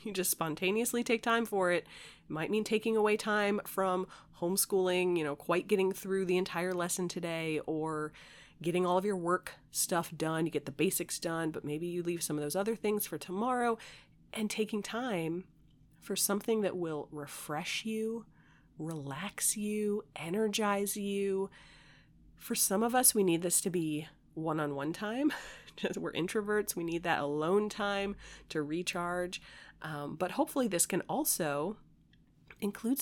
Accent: American